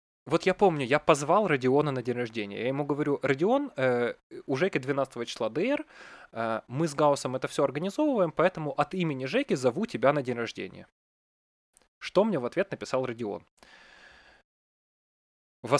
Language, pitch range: Russian, 125-175 Hz